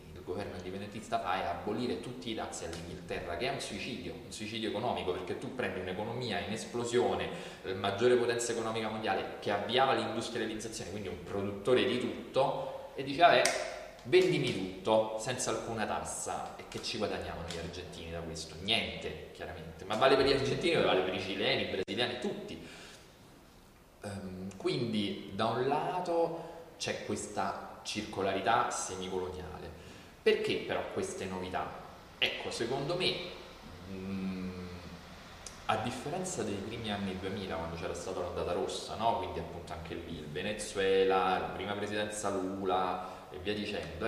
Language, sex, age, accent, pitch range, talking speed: Italian, male, 20-39, native, 90-115 Hz, 145 wpm